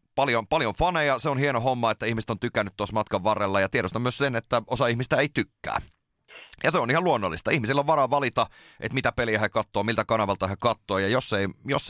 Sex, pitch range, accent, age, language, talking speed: male, 95-120 Hz, native, 30-49, Finnish, 215 wpm